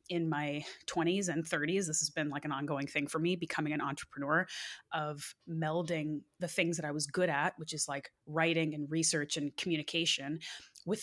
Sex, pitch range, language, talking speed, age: female, 150-175 Hz, English, 190 wpm, 20-39